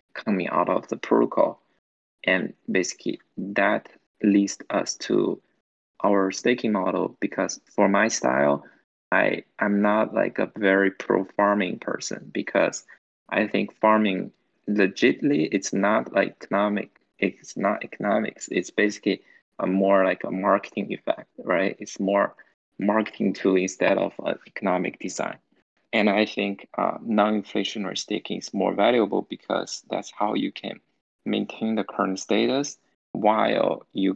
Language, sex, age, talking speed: English, male, 20-39, 135 wpm